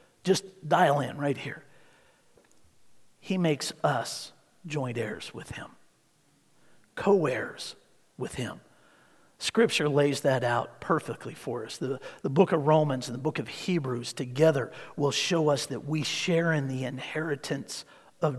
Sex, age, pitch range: male, 50-69, 145-190 Hz